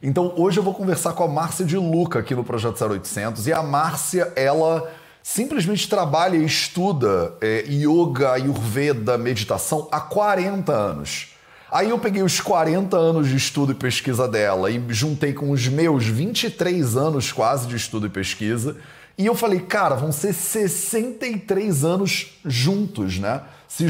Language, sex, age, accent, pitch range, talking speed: Portuguese, male, 30-49, Brazilian, 130-180 Hz, 160 wpm